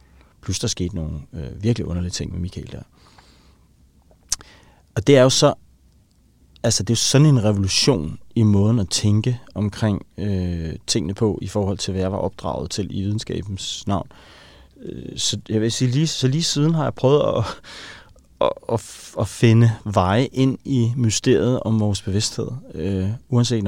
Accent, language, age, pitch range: Danish, English, 30-49, 95-120 Hz